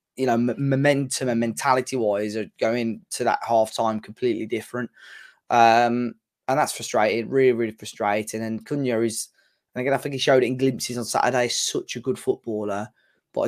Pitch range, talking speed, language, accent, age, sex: 110-125 Hz, 185 wpm, English, British, 20-39, male